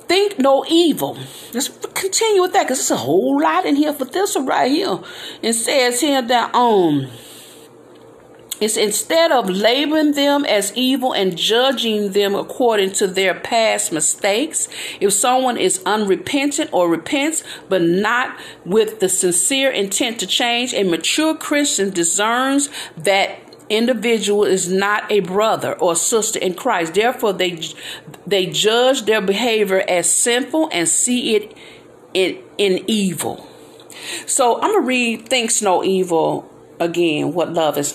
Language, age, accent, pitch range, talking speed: English, 50-69, American, 175-260 Hz, 145 wpm